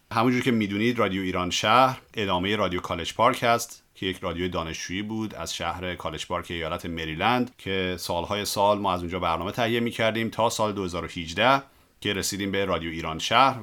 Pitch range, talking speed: 90-125 Hz, 175 wpm